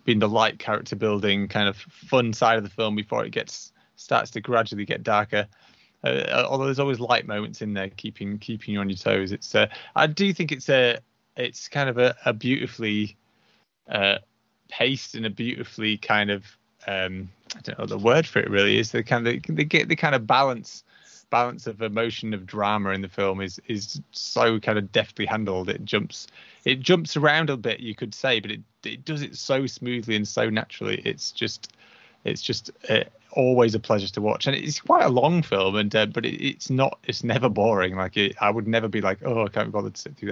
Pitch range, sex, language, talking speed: 105-135 Hz, male, English, 220 wpm